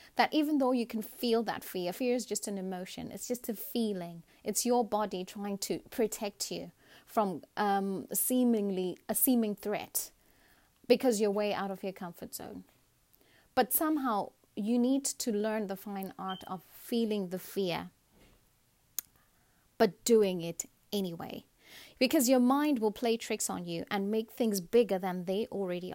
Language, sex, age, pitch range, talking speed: English, female, 30-49, 185-230 Hz, 160 wpm